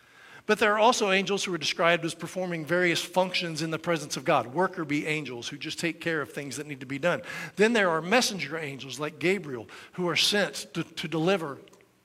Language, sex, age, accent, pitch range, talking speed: English, male, 50-69, American, 140-175 Hz, 220 wpm